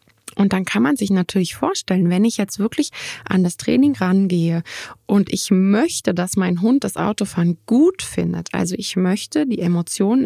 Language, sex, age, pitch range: German, female, 20-39, 175-205 Hz